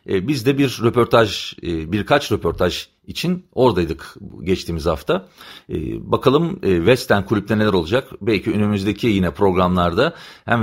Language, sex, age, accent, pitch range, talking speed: Turkish, male, 40-59, native, 90-115 Hz, 115 wpm